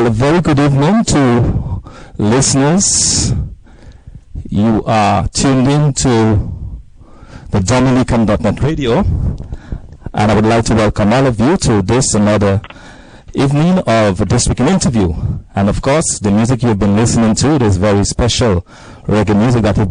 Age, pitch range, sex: 50-69, 100-120 Hz, male